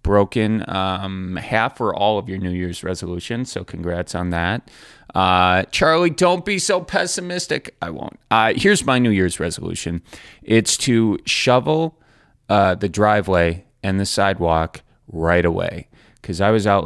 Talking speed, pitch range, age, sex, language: 155 wpm, 90-110 Hz, 30-49, male, English